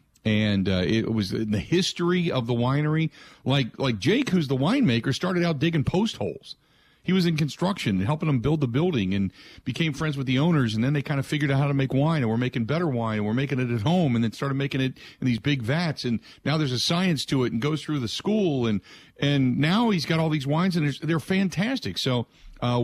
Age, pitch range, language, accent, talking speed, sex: 50-69, 110-150 Hz, English, American, 245 wpm, male